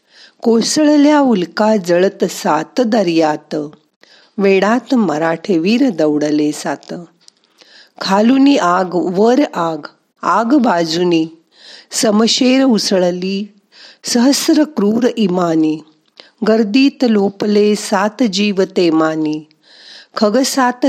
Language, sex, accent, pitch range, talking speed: Marathi, female, native, 165-235 Hz, 80 wpm